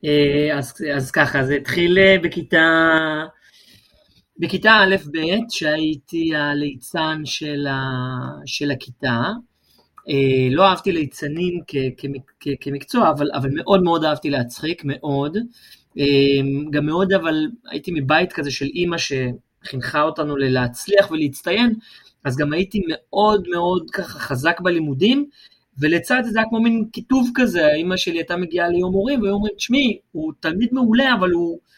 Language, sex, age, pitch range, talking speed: Hebrew, male, 30-49, 140-190 Hz, 130 wpm